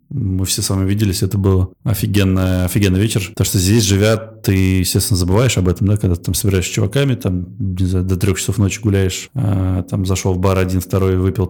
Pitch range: 95-110 Hz